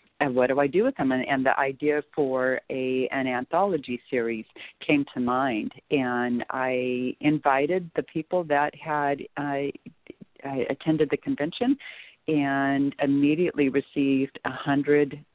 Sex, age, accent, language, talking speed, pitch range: female, 50-69, American, English, 135 wpm, 130-150 Hz